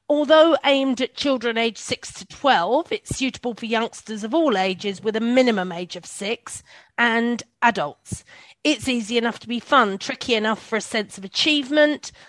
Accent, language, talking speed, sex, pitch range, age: British, English, 175 wpm, female, 210-255 Hz, 40-59